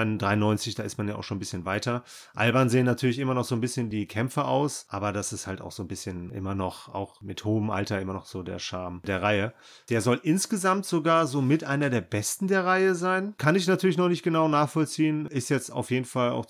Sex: male